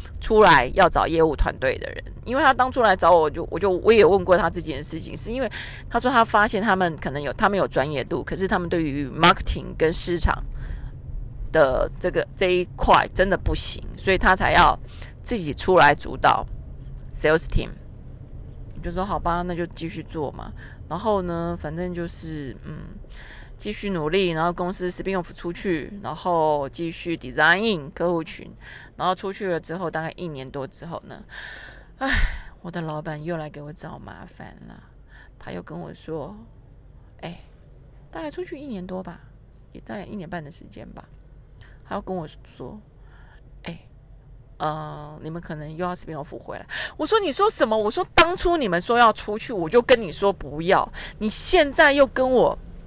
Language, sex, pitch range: Chinese, female, 155-210 Hz